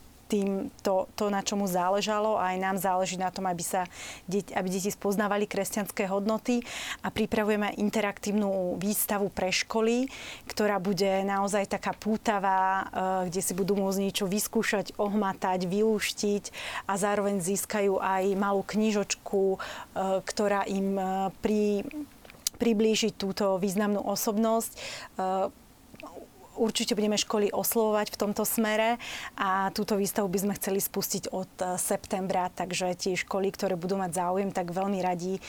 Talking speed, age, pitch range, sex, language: 130 wpm, 30-49, 190-205 Hz, female, Slovak